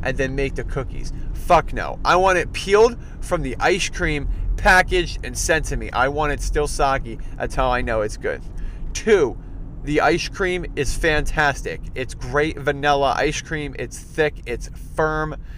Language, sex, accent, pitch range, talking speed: English, male, American, 120-145 Hz, 175 wpm